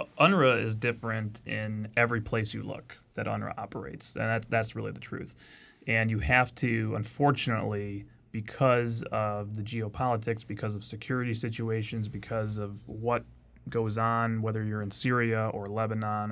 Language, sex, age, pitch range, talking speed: English, male, 30-49, 105-120 Hz, 150 wpm